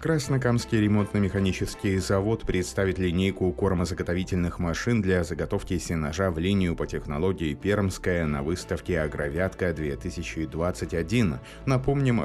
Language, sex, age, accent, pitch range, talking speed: Russian, male, 30-49, native, 80-105 Hz, 95 wpm